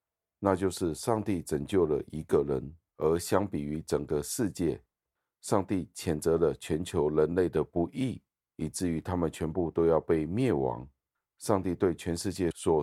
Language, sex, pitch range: Chinese, male, 75-95 Hz